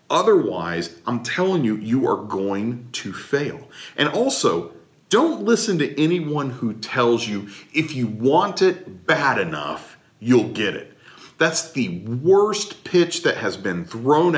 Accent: American